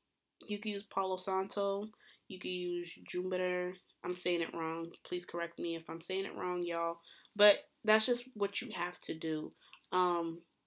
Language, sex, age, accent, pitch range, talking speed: English, female, 20-39, American, 175-205 Hz, 175 wpm